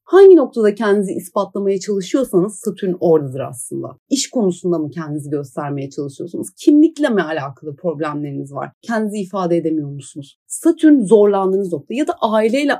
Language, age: Turkish, 30-49